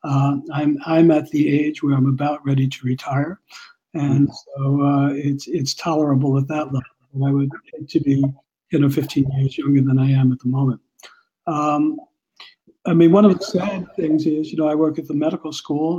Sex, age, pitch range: male, 60-79, 135-160 Hz